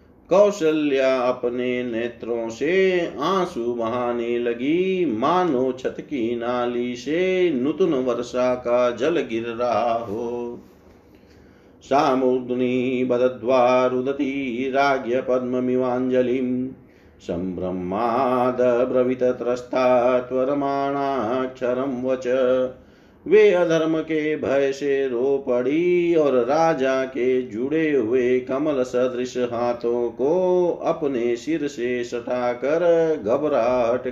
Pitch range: 120-145 Hz